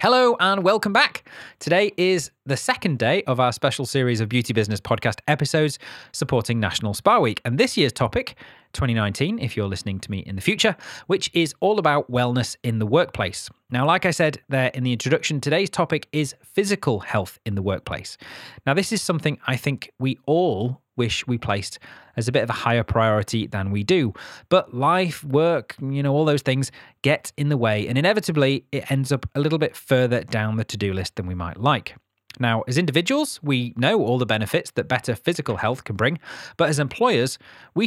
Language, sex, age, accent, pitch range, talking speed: English, male, 20-39, British, 115-160 Hz, 200 wpm